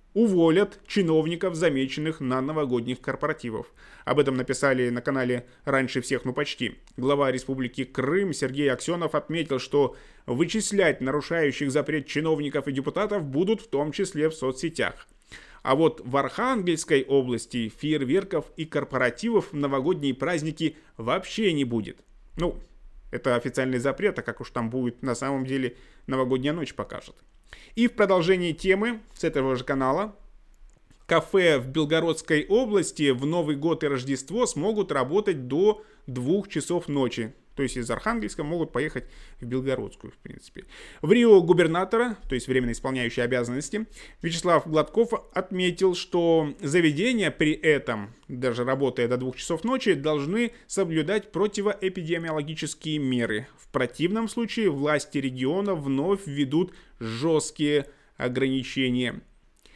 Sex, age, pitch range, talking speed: male, 20-39, 130-180 Hz, 130 wpm